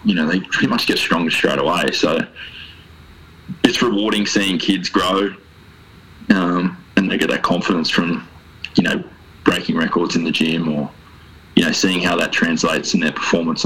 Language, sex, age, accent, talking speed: English, male, 20-39, Australian, 170 wpm